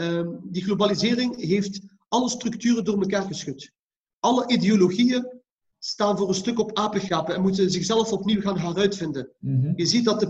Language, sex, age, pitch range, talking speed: English, male, 40-59, 185-225 Hz, 150 wpm